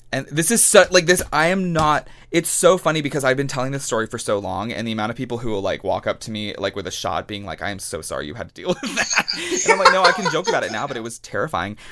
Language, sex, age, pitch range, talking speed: English, male, 20-39, 105-140 Hz, 315 wpm